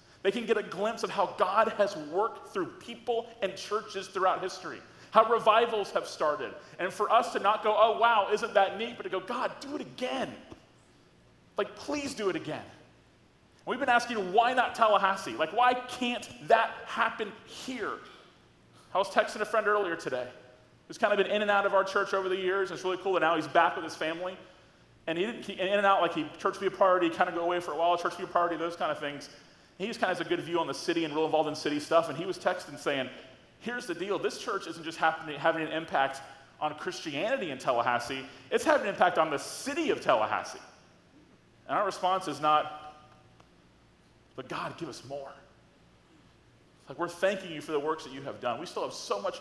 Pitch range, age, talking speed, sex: 155-215 Hz, 30-49, 225 wpm, male